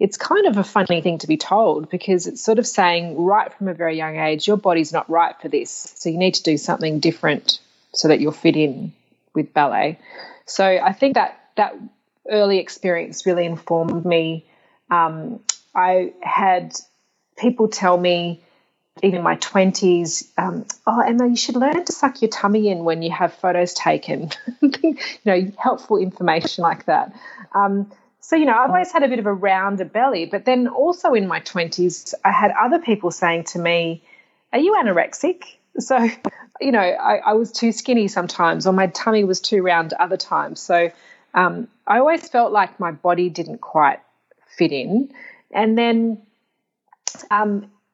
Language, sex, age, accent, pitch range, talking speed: English, female, 30-49, Australian, 170-225 Hz, 180 wpm